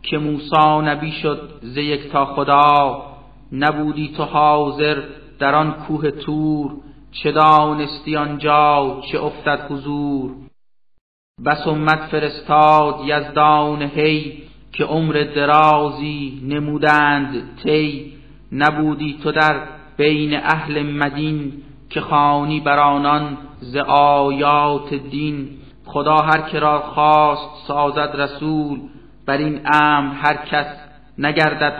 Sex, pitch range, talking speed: male, 145-155 Hz, 105 wpm